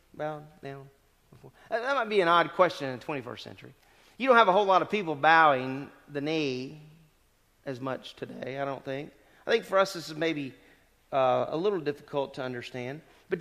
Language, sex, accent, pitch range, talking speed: English, male, American, 140-200 Hz, 190 wpm